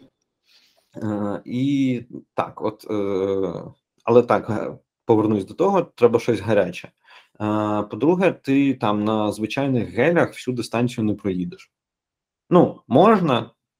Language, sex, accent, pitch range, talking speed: Ukrainian, male, native, 105-125 Hz, 115 wpm